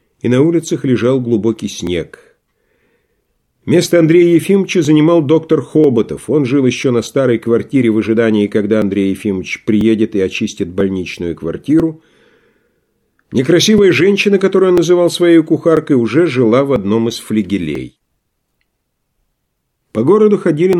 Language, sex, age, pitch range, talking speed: English, male, 50-69, 105-165 Hz, 125 wpm